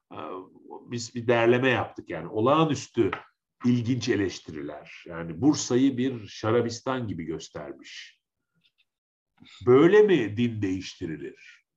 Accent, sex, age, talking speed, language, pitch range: native, male, 50-69, 90 wpm, Turkish, 110-175 Hz